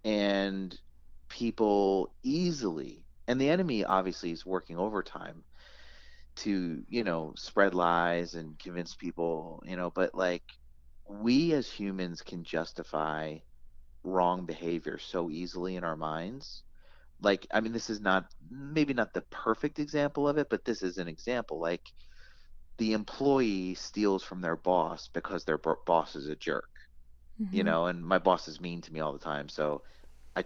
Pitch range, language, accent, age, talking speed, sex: 80-105 Hz, English, American, 30-49, 155 wpm, male